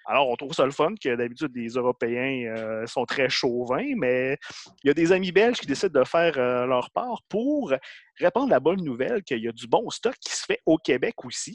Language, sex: French, male